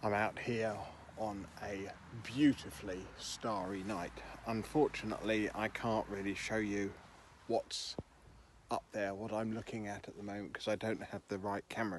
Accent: British